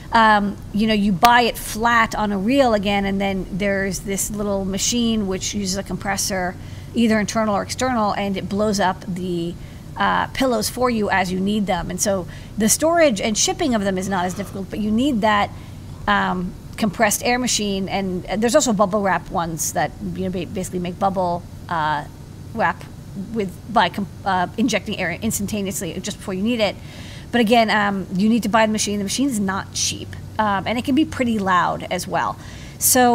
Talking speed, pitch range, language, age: 190 wpm, 190-230 Hz, English, 40-59